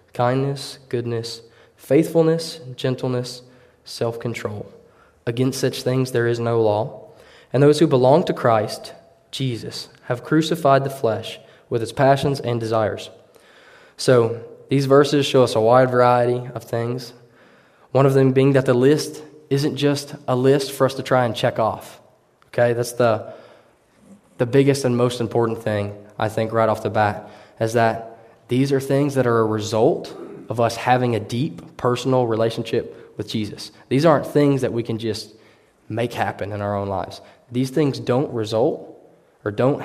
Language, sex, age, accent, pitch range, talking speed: English, male, 20-39, American, 110-130 Hz, 165 wpm